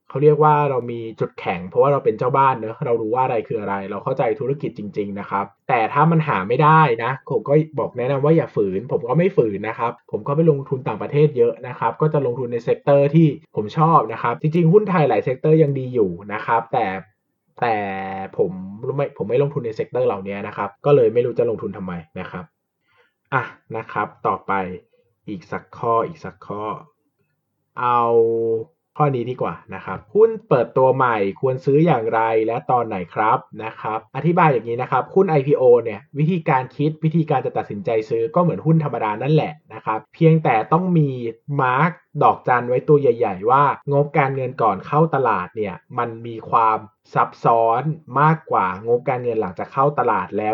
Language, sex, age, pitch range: Thai, male, 20-39, 120-165 Hz